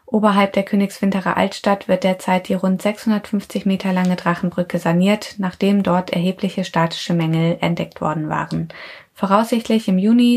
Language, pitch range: German, 175-205 Hz